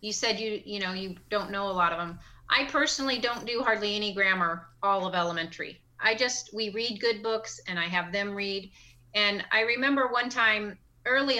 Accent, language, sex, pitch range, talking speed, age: American, English, female, 175-210 Hz, 205 wpm, 30-49